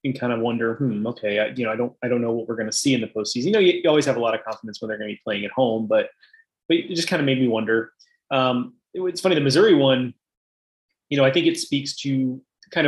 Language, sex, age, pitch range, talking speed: English, male, 20-39, 115-145 Hz, 300 wpm